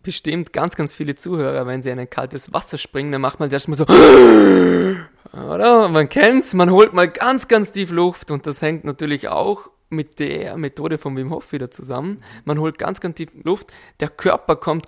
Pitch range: 130-165 Hz